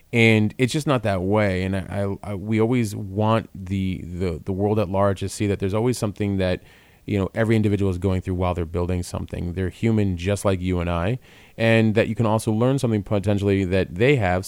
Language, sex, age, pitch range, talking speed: English, male, 30-49, 90-105 Hz, 230 wpm